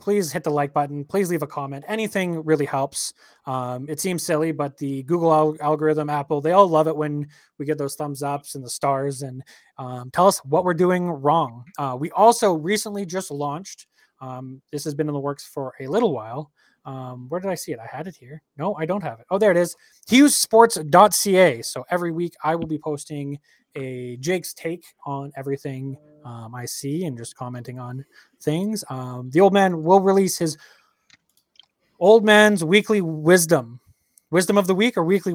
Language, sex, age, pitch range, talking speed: English, male, 20-39, 135-175 Hz, 195 wpm